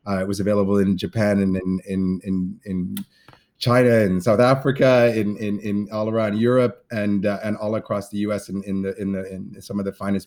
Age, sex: 30-49, male